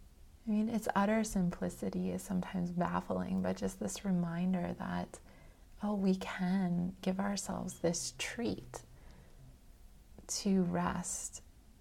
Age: 30-49